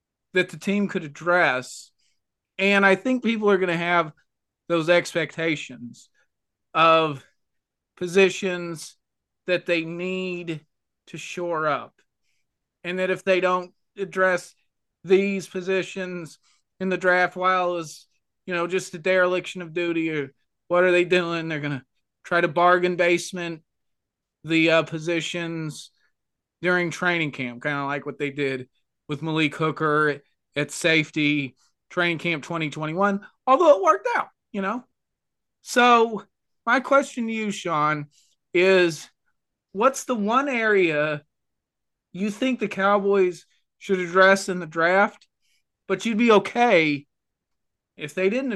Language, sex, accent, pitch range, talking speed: English, male, American, 150-190 Hz, 135 wpm